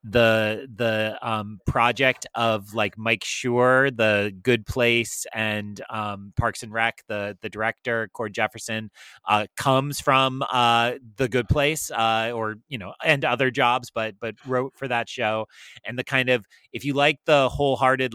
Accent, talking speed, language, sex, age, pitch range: American, 165 wpm, English, male, 30-49, 115-140 Hz